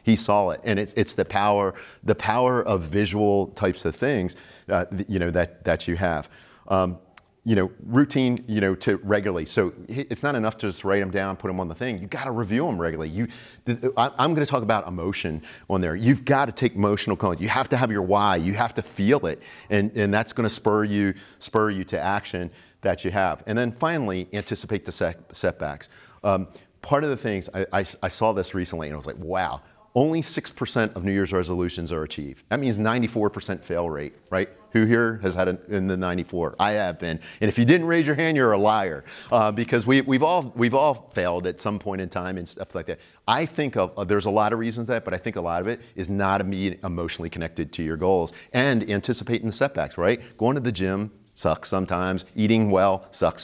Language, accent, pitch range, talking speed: English, American, 90-115 Hz, 230 wpm